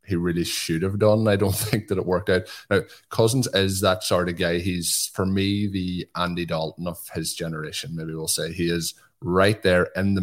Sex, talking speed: male, 215 wpm